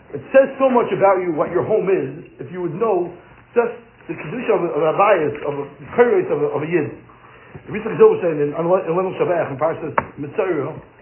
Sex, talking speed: male, 230 wpm